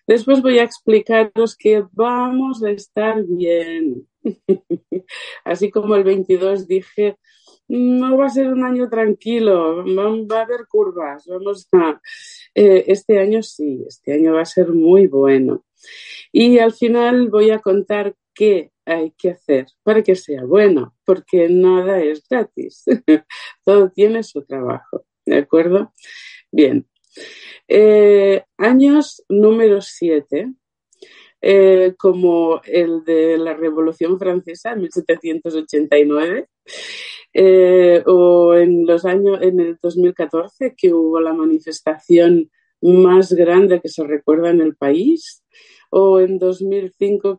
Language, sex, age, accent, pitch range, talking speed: Spanish, female, 50-69, Spanish, 175-225 Hz, 120 wpm